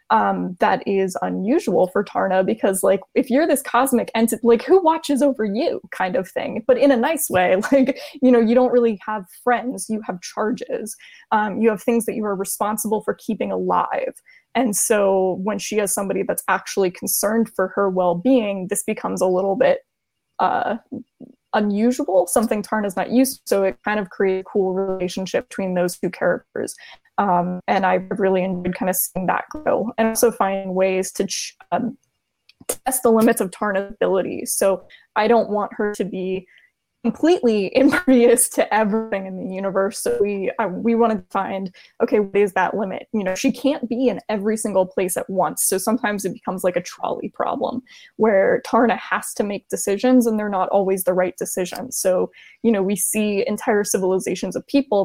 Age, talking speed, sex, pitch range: 20-39, 190 wpm, female, 190-240 Hz